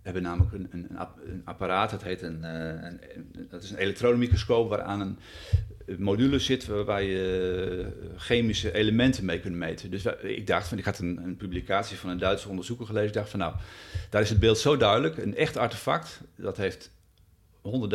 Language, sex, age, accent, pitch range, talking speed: Dutch, male, 40-59, Dutch, 90-110 Hz, 205 wpm